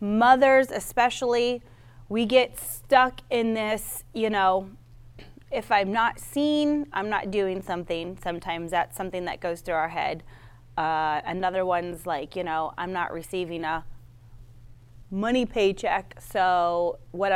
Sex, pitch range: female, 155-220 Hz